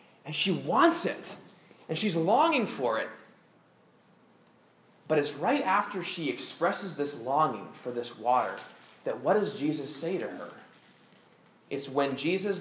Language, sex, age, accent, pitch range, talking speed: English, male, 20-39, American, 145-225 Hz, 145 wpm